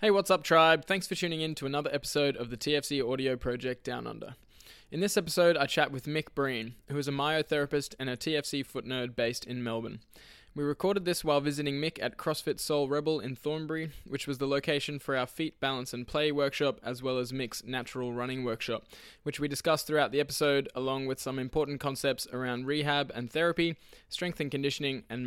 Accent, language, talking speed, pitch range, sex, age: Australian, English, 205 wpm, 130-165 Hz, male, 20-39